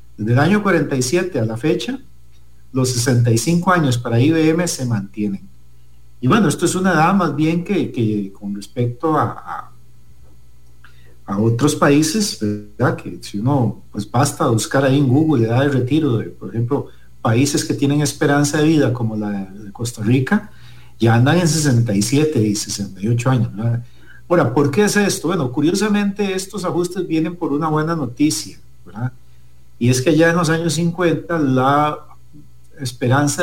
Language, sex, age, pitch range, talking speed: English, male, 50-69, 105-160 Hz, 160 wpm